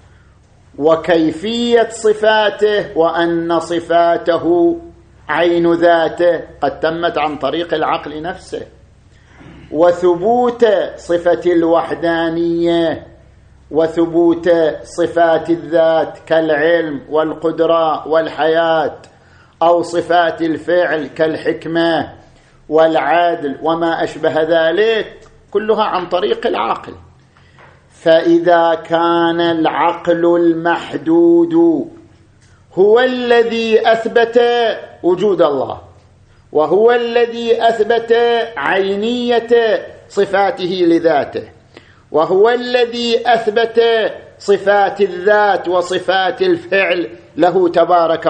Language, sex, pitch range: Arabic, male, 160-220 Hz